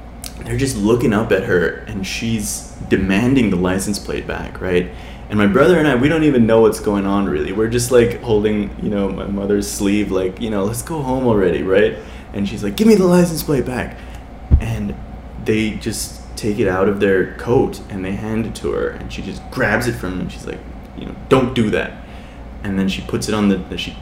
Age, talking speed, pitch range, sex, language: 20-39, 225 wpm, 90-120 Hz, male, English